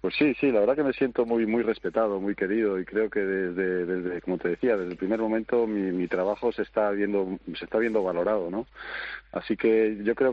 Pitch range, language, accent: 90-115 Hz, Spanish, Spanish